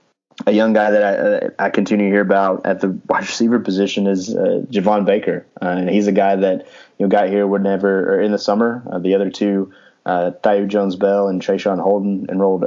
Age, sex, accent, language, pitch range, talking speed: 20-39, male, American, English, 90-100 Hz, 215 wpm